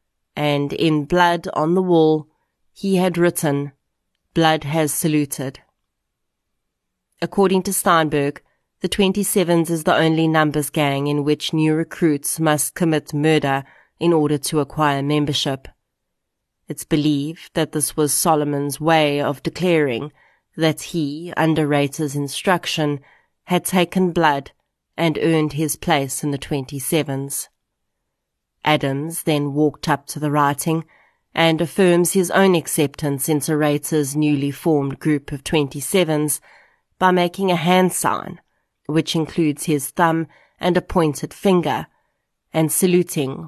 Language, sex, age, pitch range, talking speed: English, female, 30-49, 145-170 Hz, 125 wpm